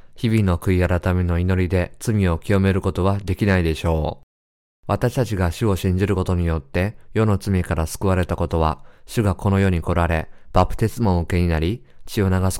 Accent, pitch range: native, 85-100 Hz